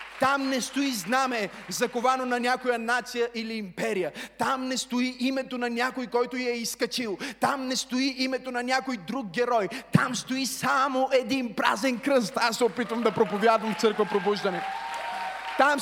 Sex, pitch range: male, 200-250 Hz